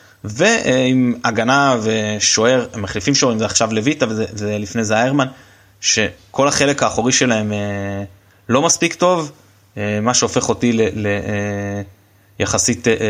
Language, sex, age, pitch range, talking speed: Hebrew, male, 20-39, 110-145 Hz, 100 wpm